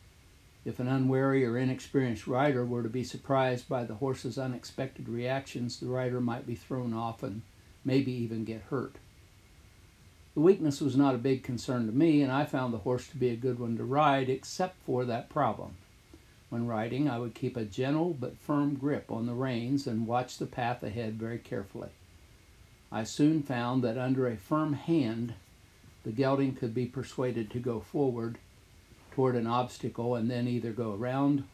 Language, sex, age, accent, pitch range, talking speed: English, male, 60-79, American, 110-130 Hz, 180 wpm